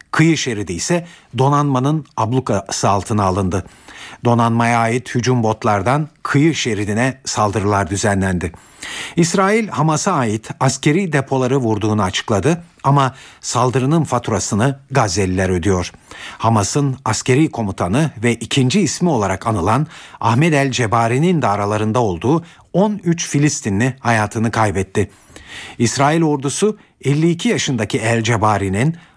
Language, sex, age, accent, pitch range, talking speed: Turkish, male, 50-69, native, 105-145 Hz, 105 wpm